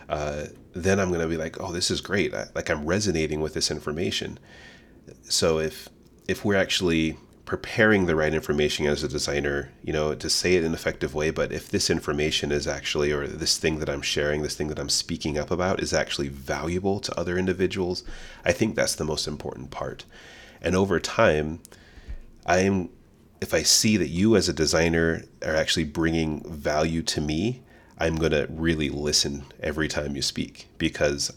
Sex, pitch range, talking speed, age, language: male, 75-80 Hz, 185 wpm, 30-49, English